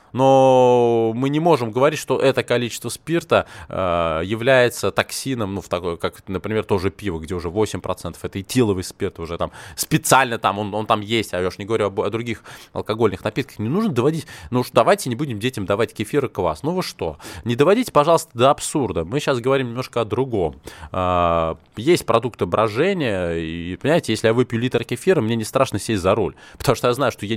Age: 20-39